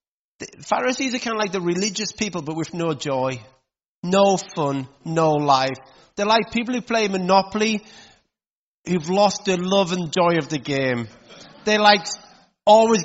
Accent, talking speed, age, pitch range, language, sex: British, 155 wpm, 30-49, 165-215 Hz, English, male